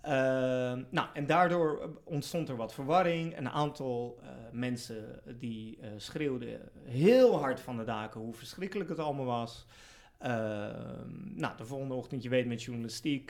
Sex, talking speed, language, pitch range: male, 155 wpm, Dutch, 120-145 Hz